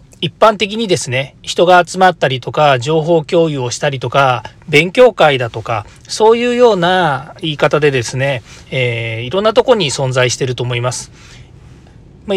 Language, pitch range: Japanese, 125-170 Hz